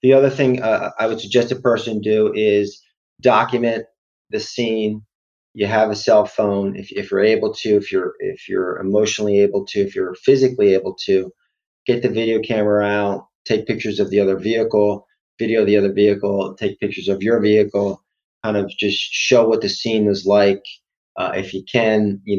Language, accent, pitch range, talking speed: English, American, 100-125 Hz, 190 wpm